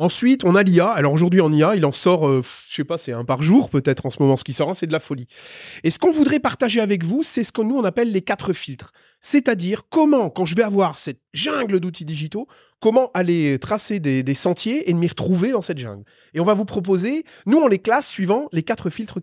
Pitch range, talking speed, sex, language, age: 145-225 Hz, 260 wpm, male, French, 30-49